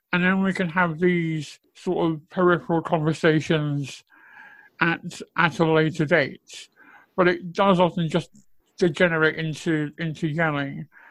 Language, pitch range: English, 160-185 Hz